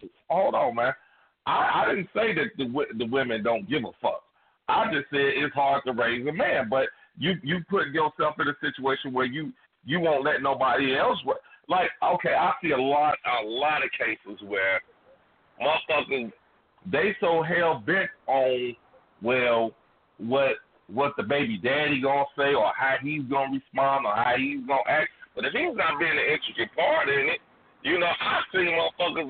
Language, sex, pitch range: English, male, 135-175 Hz